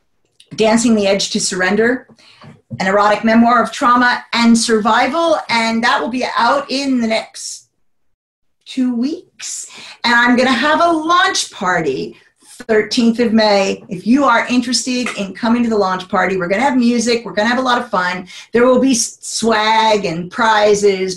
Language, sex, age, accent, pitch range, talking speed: English, female, 40-59, American, 200-250 Hz, 165 wpm